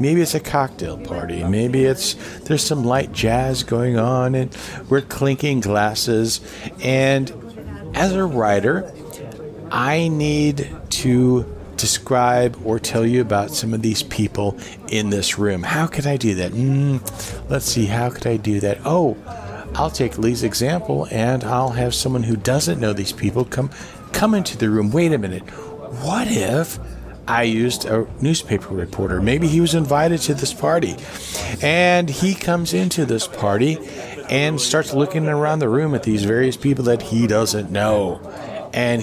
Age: 50-69